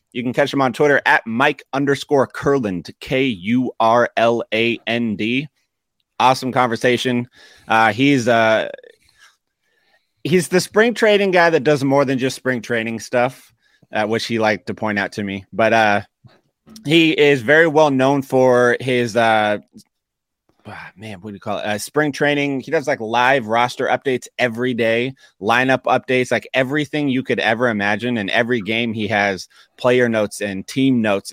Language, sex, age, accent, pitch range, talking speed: English, male, 30-49, American, 110-130 Hz, 160 wpm